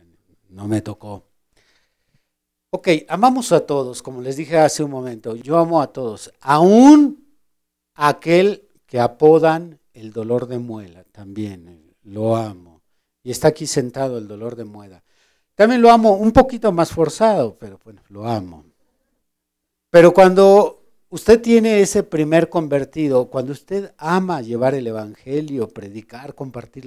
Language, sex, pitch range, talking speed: Spanish, male, 115-170 Hz, 140 wpm